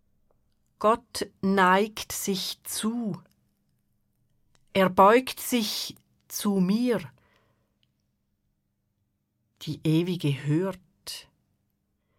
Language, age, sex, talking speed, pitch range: German, 40-59, female, 60 wpm, 160-220 Hz